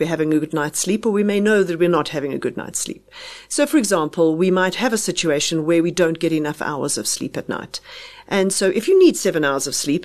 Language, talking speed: English, 270 wpm